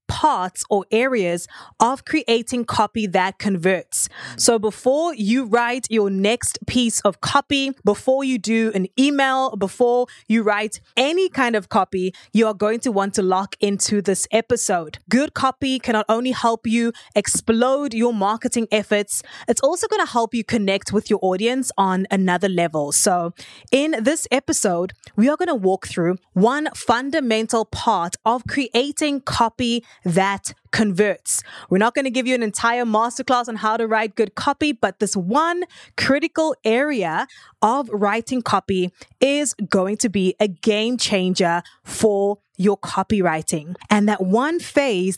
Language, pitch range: English, 195-255 Hz